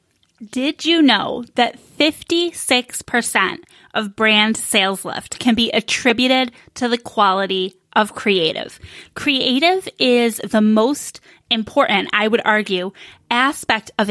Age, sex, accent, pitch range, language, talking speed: 10-29, female, American, 205-265 Hz, English, 115 wpm